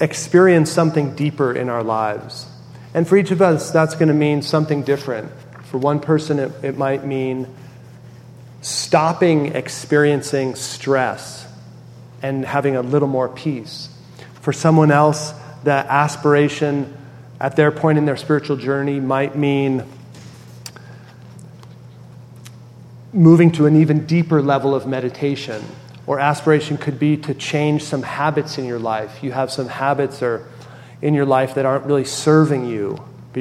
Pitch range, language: 125-150 Hz, English